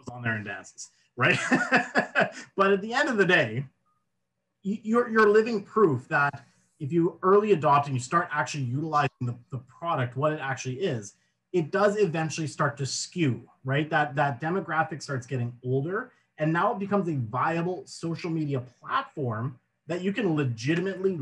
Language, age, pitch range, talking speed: English, 30-49, 125-160 Hz, 165 wpm